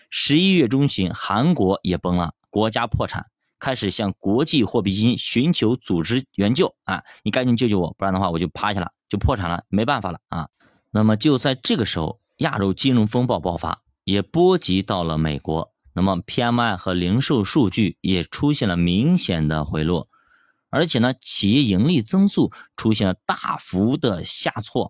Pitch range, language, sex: 95-145 Hz, Chinese, male